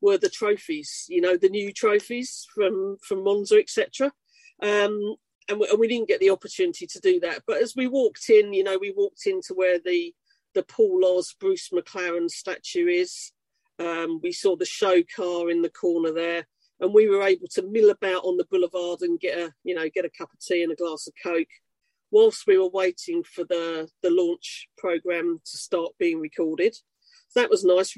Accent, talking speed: British, 200 wpm